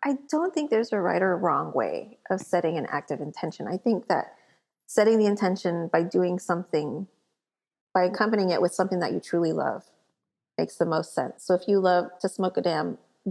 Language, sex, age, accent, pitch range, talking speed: English, female, 30-49, American, 190-250 Hz, 200 wpm